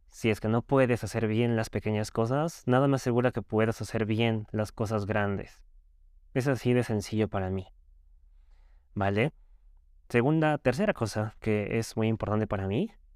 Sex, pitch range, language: male, 100-125 Hz, Spanish